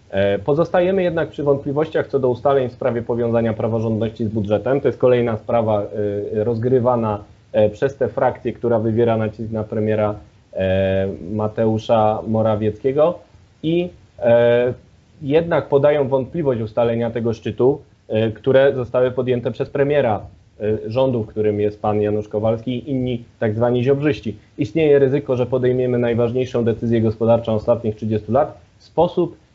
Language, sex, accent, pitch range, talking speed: Polish, male, native, 110-130 Hz, 130 wpm